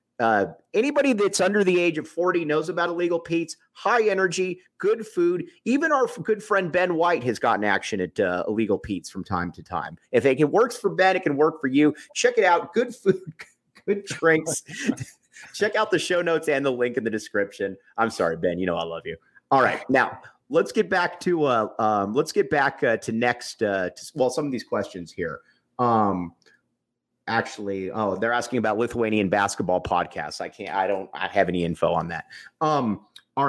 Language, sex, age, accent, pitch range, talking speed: English, male, 30-49, American, 120-185 Hz, 200 wpm